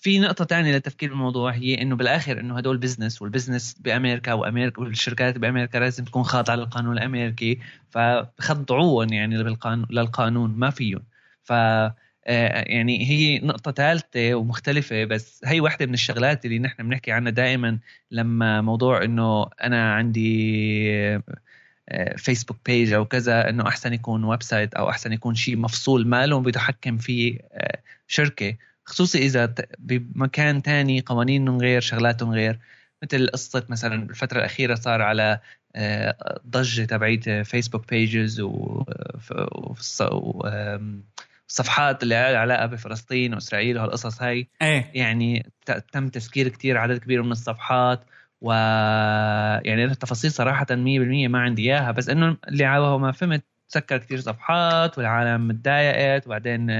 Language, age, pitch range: Arabic, 20-39, 115-130 Hz